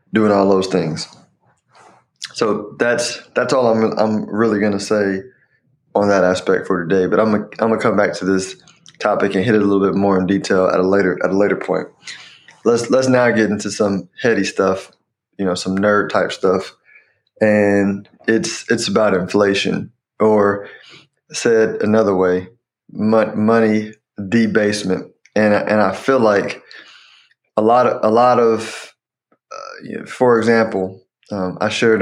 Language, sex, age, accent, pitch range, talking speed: English, male, 20-39, American, 95-110 Hz, 165 wpm